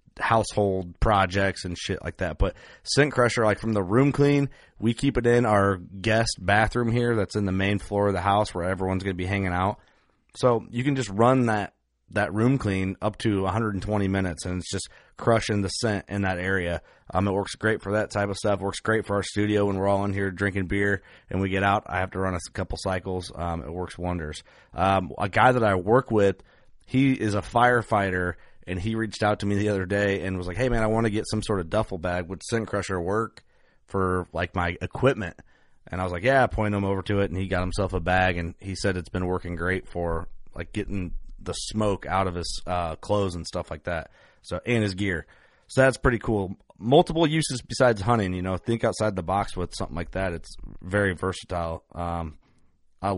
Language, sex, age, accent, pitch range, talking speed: English, male, 30-49, American, 90-110 Hz, 230 wpm